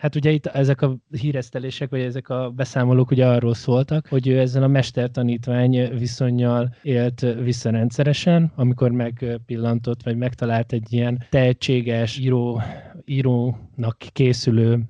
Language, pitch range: Hungarian, 120-135 Hz